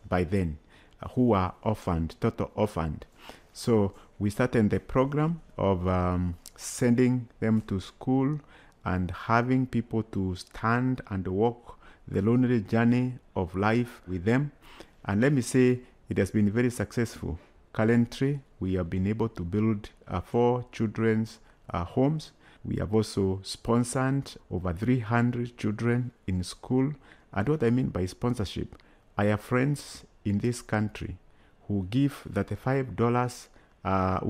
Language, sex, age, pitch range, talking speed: English, male, 50-69, 95-120 Hz, 140 wpm